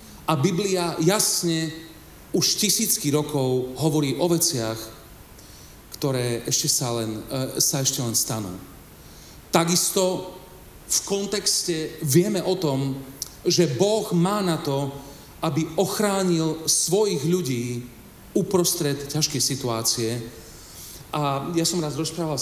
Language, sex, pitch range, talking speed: Slovak, male, 115-150 Hz, 110 wpm